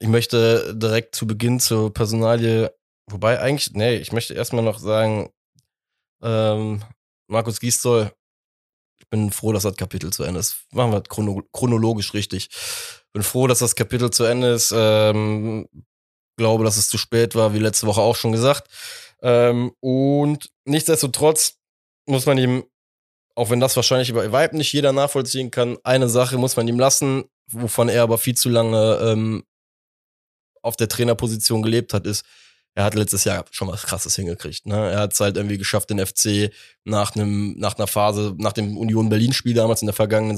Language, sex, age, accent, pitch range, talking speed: German, male, 20-39, German, 105-120 Hz, 180 wpm